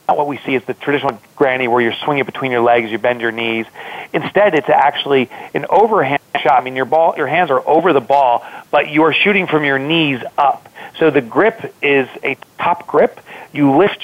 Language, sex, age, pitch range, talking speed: English, male, 40-59, 130-160 Hz, 215 wpm